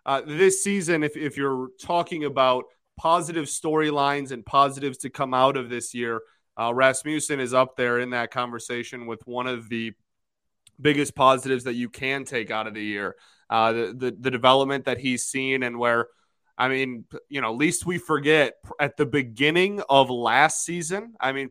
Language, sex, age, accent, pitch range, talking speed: English, male, 20-39, American, 120-145 Hz, 180 wpm